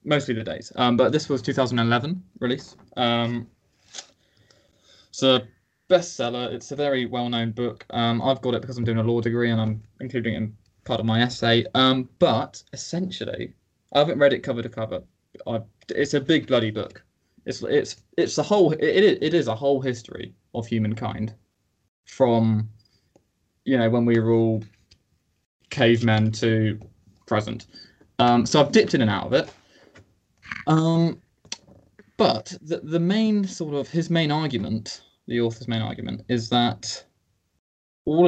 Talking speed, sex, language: 165 wpm, male, English